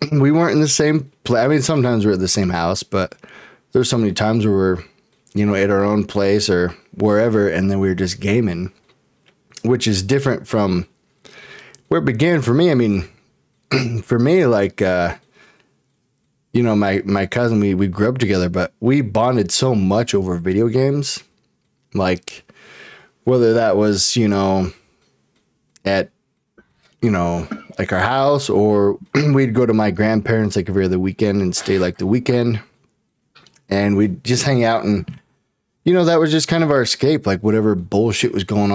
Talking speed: 180 wpm